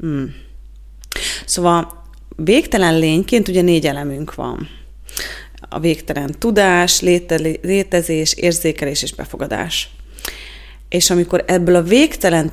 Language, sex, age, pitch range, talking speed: Hungarian, female, 30-49, 155-180 Hz, 100 wpm